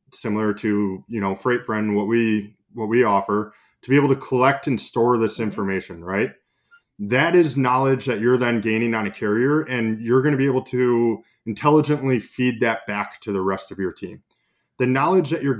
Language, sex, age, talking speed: English, male, 20-39, 195 wpm